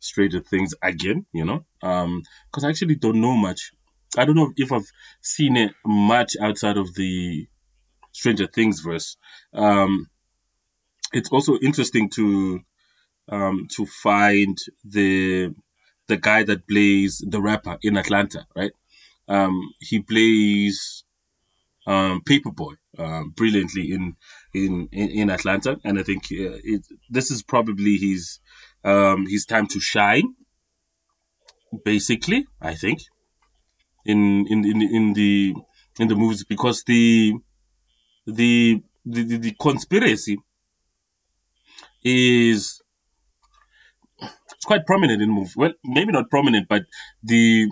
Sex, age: male, 20-39